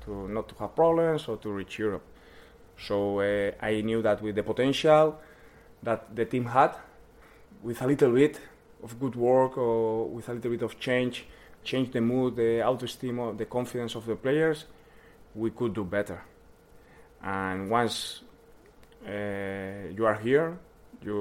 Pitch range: 100-125 Hz